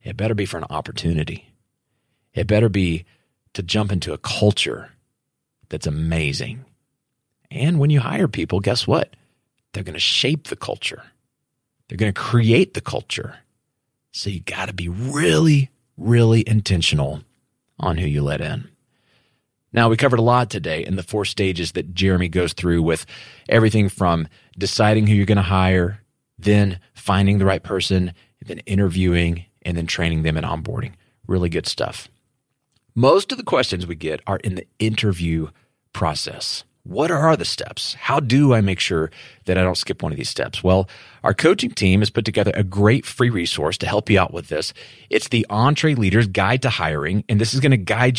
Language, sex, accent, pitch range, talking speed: English, male, American, 90-125 Hz, 180 wpm